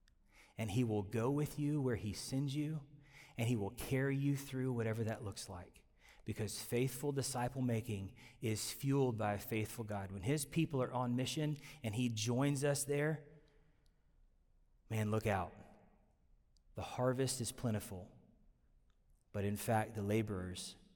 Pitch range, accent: 120-165 Hz, American